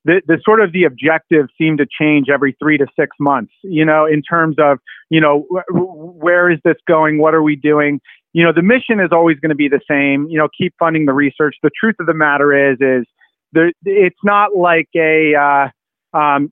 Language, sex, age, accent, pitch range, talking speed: English, male, 30-49, American, 150-170 Hz, 220 wpm